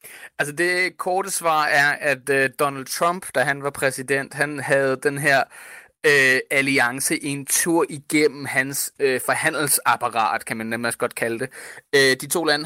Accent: native